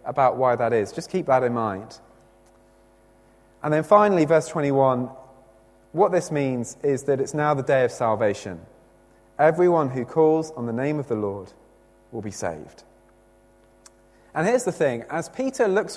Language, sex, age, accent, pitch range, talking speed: English, male, 20-39, British, 110-160 Hz, 165 wpm